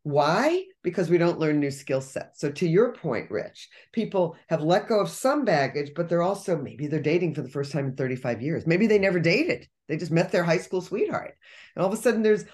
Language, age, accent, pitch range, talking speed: English, 40-59, American, 150-190 Hz, 240 wpm